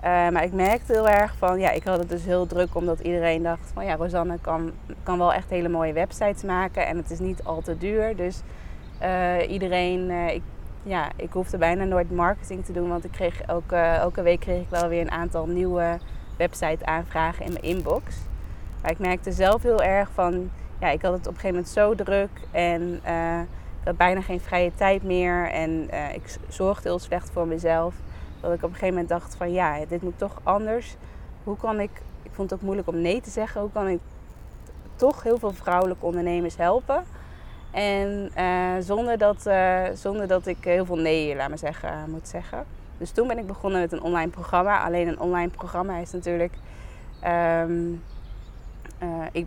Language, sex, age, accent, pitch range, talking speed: Dutch, female, 20-39, Dutch, 170-185 Hz, 200 wpm